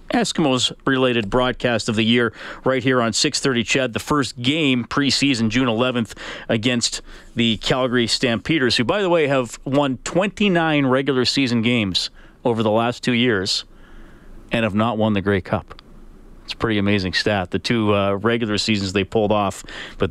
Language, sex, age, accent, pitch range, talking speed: English, male, 40-59, American, 110-150 Hz, 165 wpm